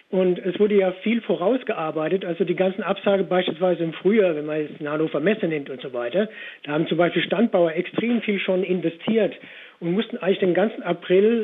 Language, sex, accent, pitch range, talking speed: German, male, German, 175-210 Hz, 195 wpm